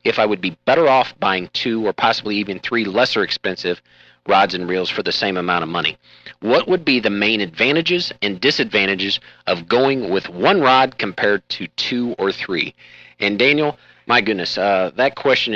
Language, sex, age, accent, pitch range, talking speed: English, male, 40-59, American, 95-125 Hz, 185 wpm